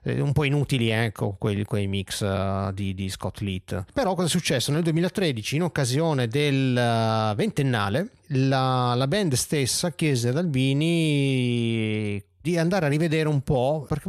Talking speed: 150 wpm